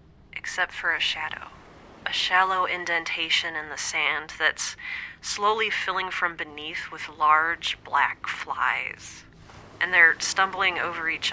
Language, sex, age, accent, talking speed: English, female, 30-49, American, 125 wpm